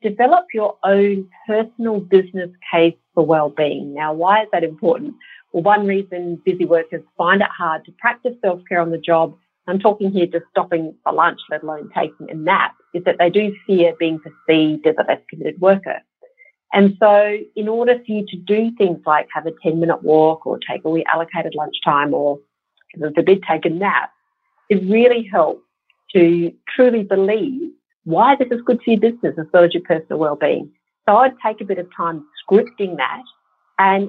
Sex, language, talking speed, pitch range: female, English, 185 wpm, 170-215 Hz